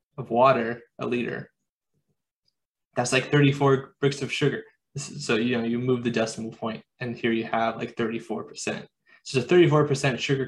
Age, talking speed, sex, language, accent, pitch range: 20-39, 170 wpm, male, English, American, 120-140 Hz